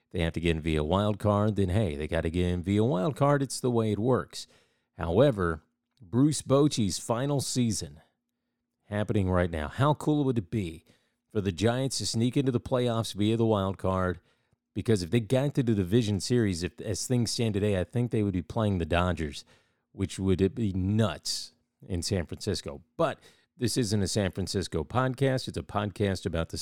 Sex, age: male, 40-59